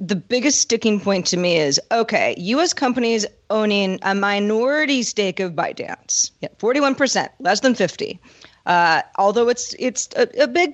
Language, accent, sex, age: English, American, female, 40-59